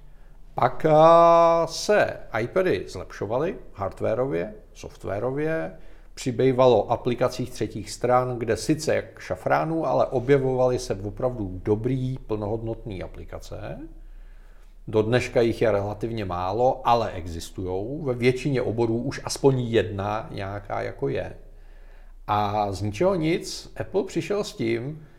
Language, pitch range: Czech, 105-140 Hz